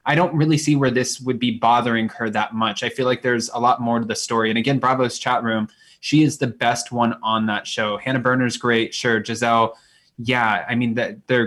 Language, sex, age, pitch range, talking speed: English, male, 20-39, 120-150 Hz, 230 wpm